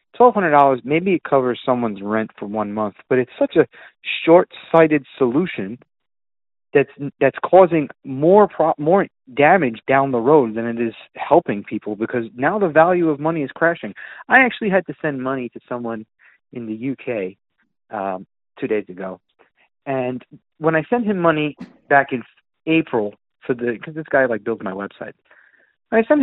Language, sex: English, male